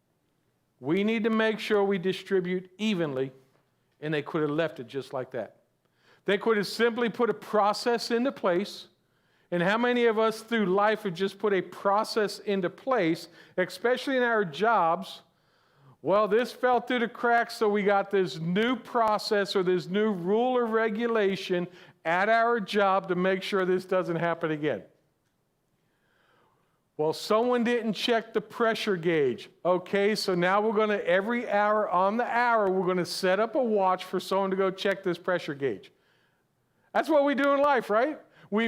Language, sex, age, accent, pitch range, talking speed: English, male, 50-69, American, 185-230 Hz, 175 wpm